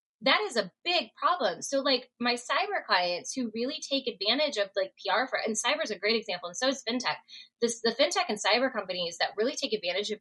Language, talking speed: English, 230 wpm